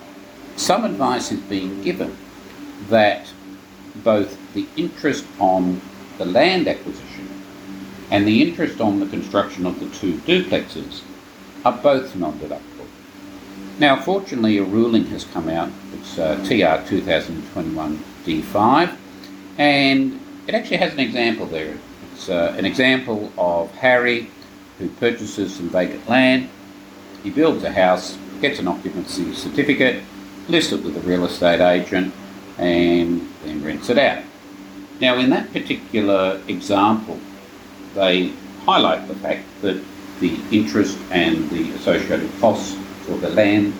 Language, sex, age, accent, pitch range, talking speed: English, male, 50-69, Australian, 95-110 Hz, 130 wpm